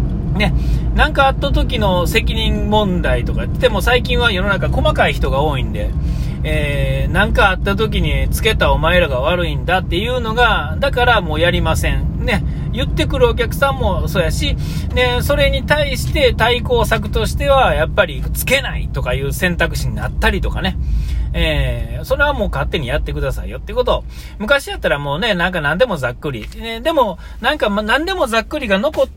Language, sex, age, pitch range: Japanese, male, 40-59, 140-230 Hz